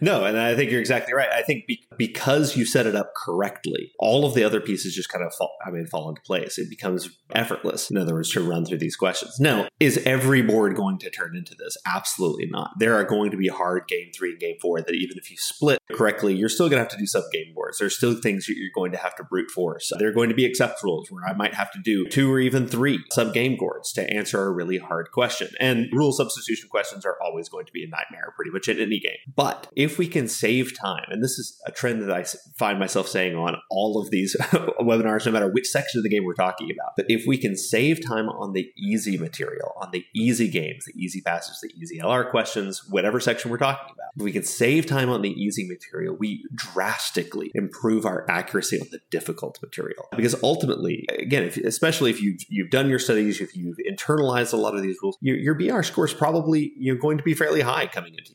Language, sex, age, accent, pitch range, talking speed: English, male, 30-49, American, 100-145 Hz, 250 wpm